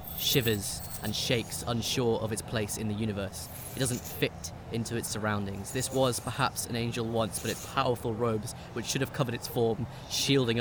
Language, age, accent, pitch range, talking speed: English, 20-39, British, 105-125 Hz, 185 wpm